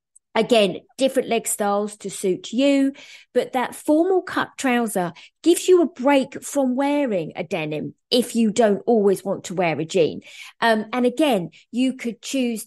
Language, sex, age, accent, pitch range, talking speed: English, female, 20-39, British, 195-250 Hz, 165 wpm